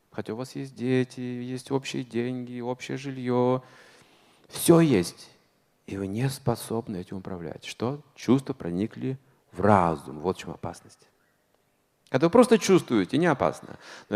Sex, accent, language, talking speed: male, native, Russian, 145 wpm